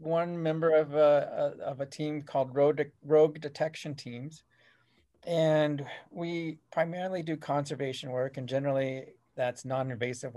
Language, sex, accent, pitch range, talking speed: English, male, American, 120-145 Hz, 135 wpm